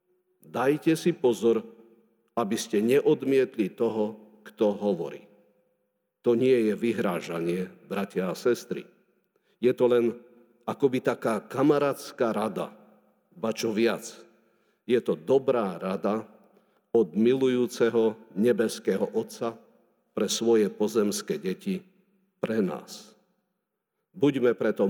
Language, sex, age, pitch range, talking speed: Slovak, male, 50-69, 110-130 Hz, 100 wpm